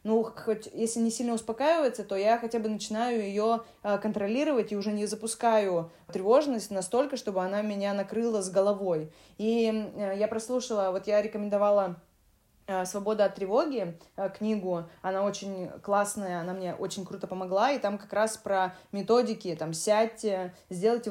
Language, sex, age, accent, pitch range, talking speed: Russian, female, 20-39, native, 195-245 Hz, 150 wpm